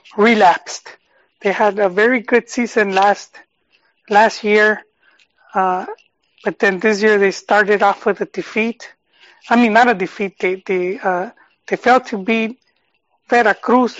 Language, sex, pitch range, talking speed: English, male, 200-230 Hz, 145 wpm